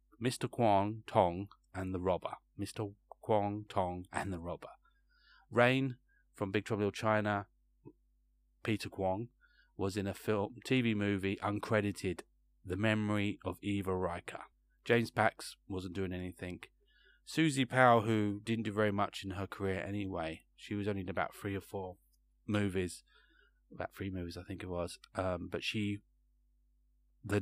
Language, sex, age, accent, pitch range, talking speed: English, male, 30-49, British, 90-105 Hz, 145 wpm